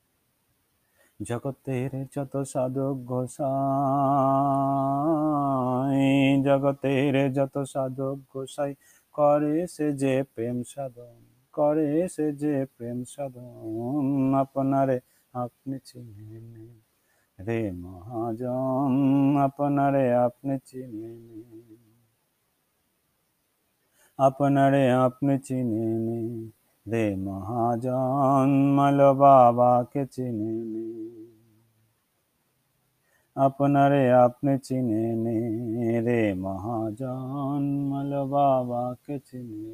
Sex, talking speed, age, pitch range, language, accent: male, 60 wpm, 30-49, 115-140 Hz, Bengali, native